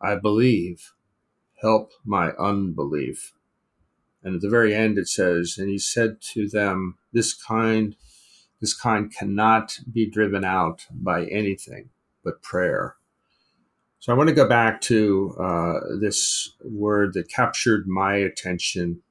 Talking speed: 130 wpm